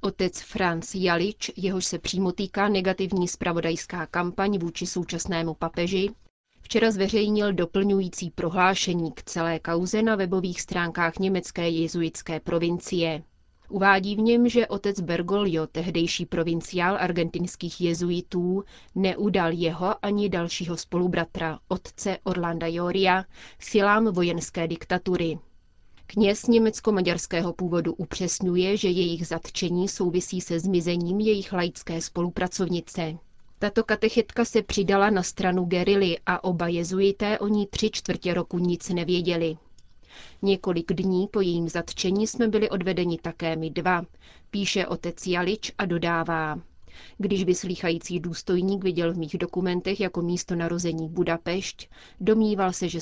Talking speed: 120 wpm